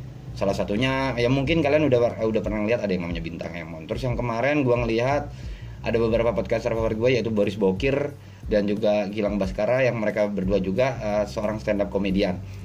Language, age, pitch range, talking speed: Indonesian, 20-39, 100-125 Hz, 190 wpm